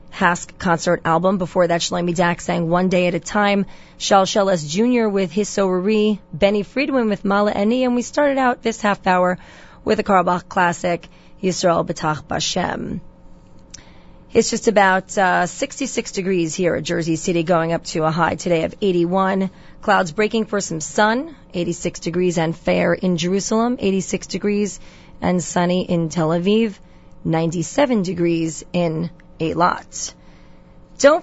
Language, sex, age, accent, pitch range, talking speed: English, female, 30-49, American, 175-210 Hz, 155 wpm